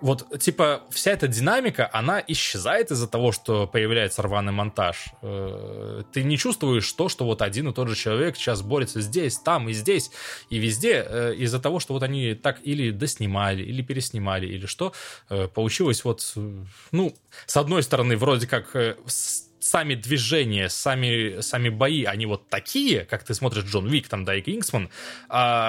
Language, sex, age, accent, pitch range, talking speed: Russian, male, 20-39, native, 110-160 Hz, 160 wpm